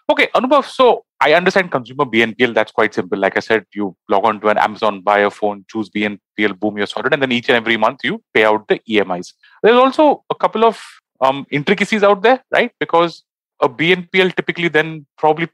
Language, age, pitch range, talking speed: English, 30-49, 110-160 Hz, 210 wpm